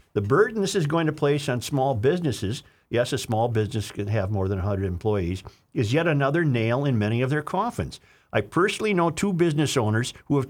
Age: 50-69